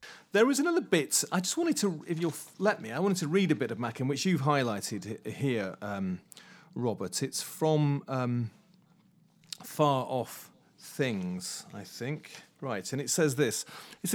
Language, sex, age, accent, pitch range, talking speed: English, male, 40-59, British, 110-170 Hz, 170 wpm